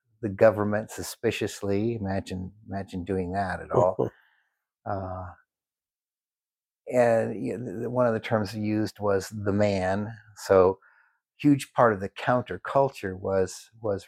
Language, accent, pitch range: English, American, 95-110 Hz